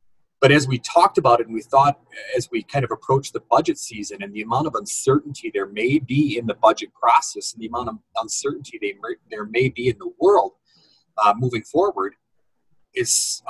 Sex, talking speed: male, 200 wpm